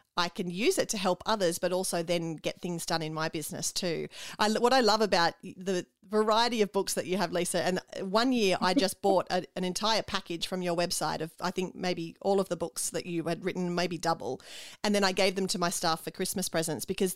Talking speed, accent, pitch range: 235 wpm, Australian, 175-210 Hz